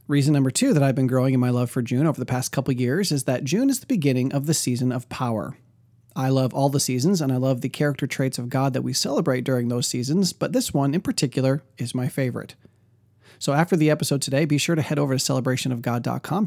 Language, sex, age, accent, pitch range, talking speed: English, male, 30-49, American, 125-150 Hz, 245 wpm